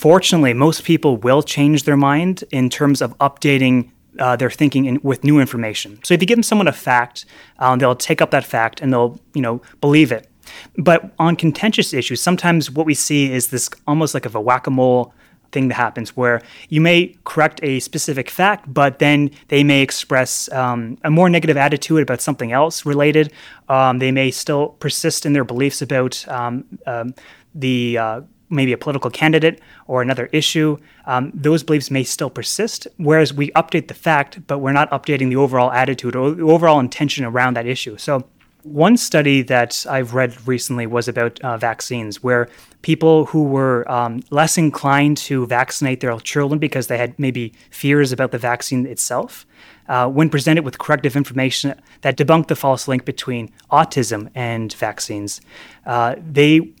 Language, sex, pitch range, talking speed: English, male, 125-155 Hz, 180 wpm